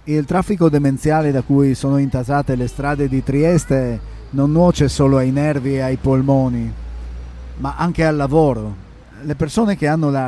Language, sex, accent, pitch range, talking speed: Italian, male, native, 120-155 Hz, 165 wpm